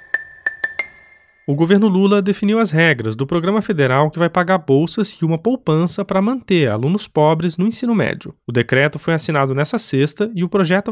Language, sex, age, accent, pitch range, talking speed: Portuguese, male, 20-39, Brazilian, 140-195 Hz, 175 wpm